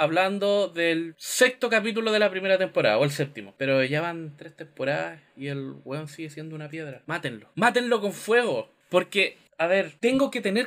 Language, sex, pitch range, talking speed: English, male, 170-235 Hz, 185 wpm